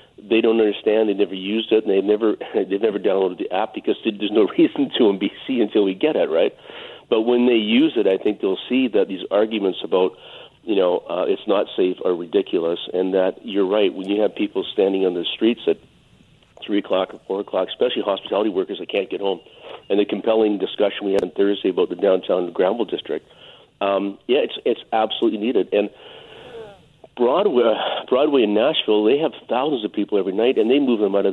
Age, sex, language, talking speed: 50-69, male, English, 220 wpm